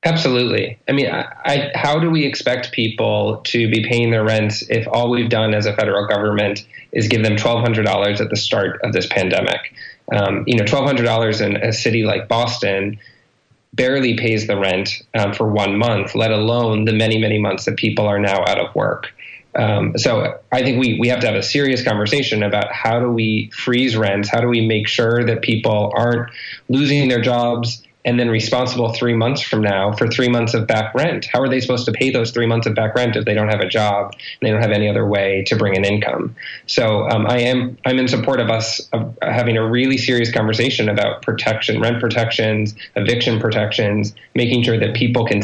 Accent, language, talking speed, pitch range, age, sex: American, English, 205 wpm, 105-120 Hz, 20-39, male